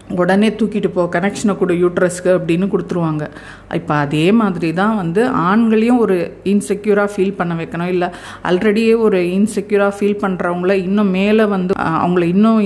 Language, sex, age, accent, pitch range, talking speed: Tamil, female, 50-69, native, 170-205 Hz, 135 wpm